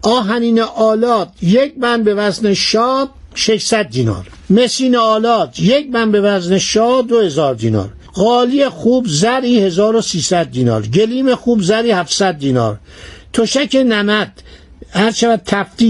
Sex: male